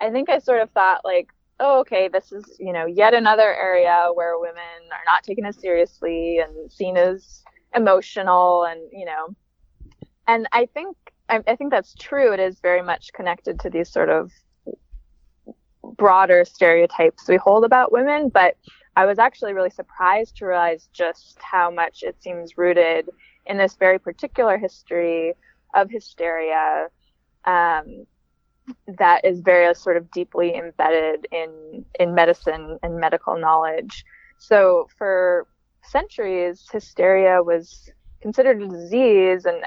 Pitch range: 170-205 Hz